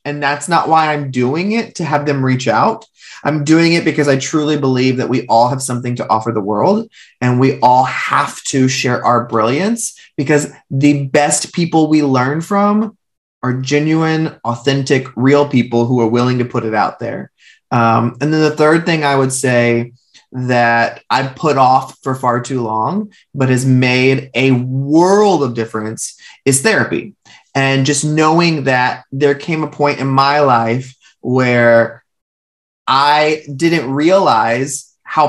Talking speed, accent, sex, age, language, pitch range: 165 wpm, American, male, 20-39, English, 125-150 Hz